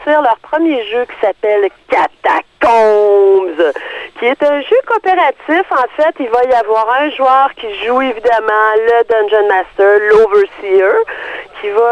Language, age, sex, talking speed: French, 40-59, female, 140 wpm